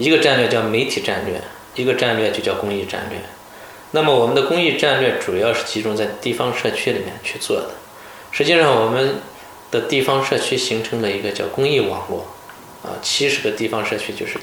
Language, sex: Chinese, male